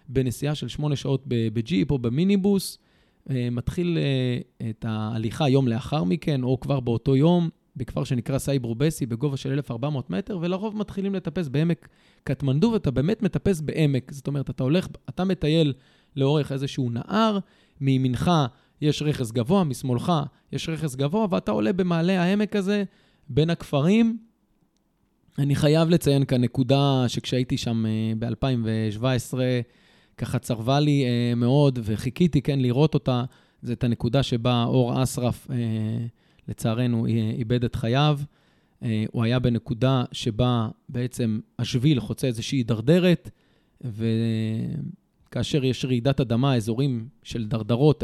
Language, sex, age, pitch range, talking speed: Hebrew, male, 20-39, 120-155 Hz, 120 wpm